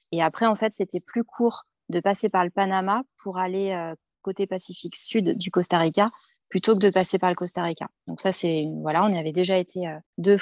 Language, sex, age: French, female, 20-39